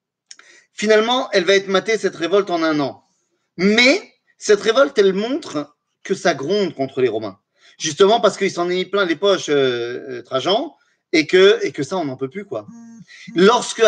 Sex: male